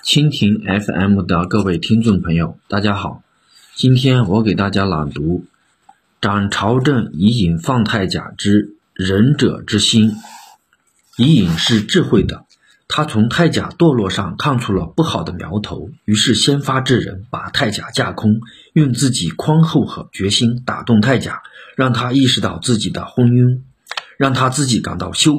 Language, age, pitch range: Chinese, 50-69, 100-130 Hz